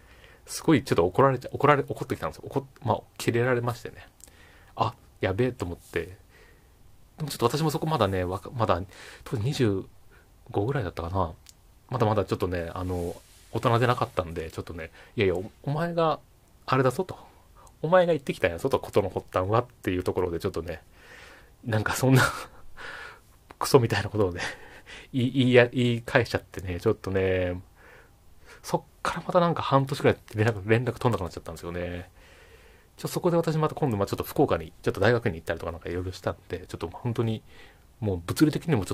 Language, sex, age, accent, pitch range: Japanese, male, 30-49, native, 95-130 Hz